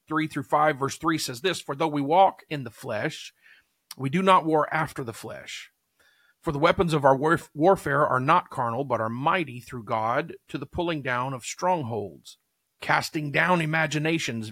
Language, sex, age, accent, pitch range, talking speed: English, male, 40-59, American, 125-160 Hz, 180 wpm